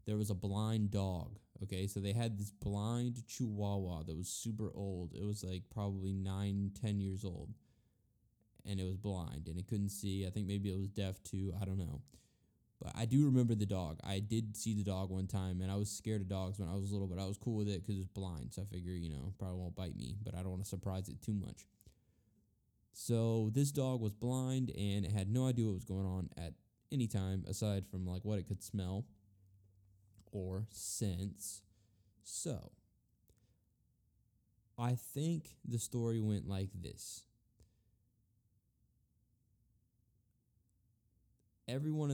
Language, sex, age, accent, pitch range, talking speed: English, male, 10-29, American, 95-110 Hz, 185 wpm